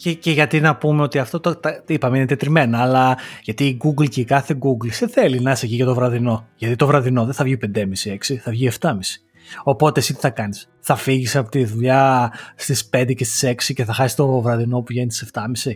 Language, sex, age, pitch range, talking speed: Greek, male, 30-49, 130-185 Hz, 230 wpm